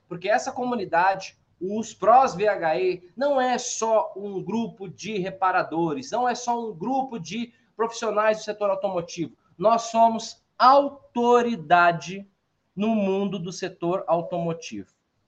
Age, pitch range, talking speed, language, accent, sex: 20-39, 195-255 Hz, 120 wpm, Portuguese, Brazilian, male